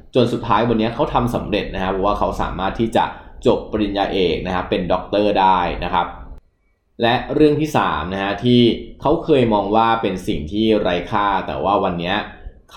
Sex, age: male, 20-39